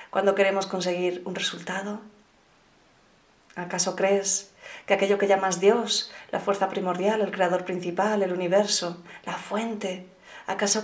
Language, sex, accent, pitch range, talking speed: Spanish, female, Spanish, 185-210 Hz, 125 wpm